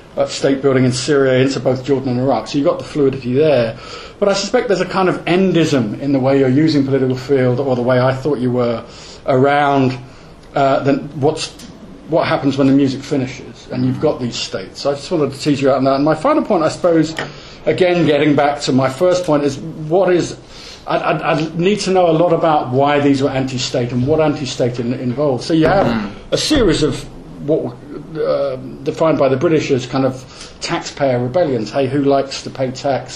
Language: English